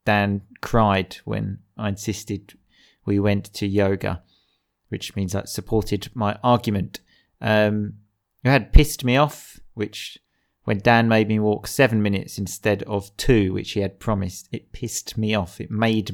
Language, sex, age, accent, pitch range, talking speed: English, male, 30-49, British, 100-120 Hz, 155 wpm